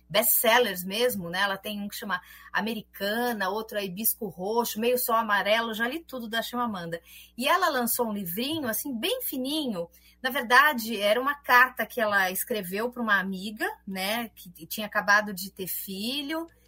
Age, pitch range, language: 30-49, 205-260 Hz, Portuguese